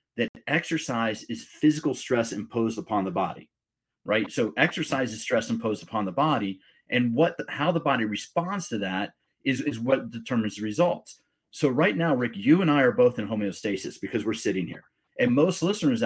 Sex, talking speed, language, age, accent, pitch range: male, 190 wpm, English, 40-59, American, 115-155 Hz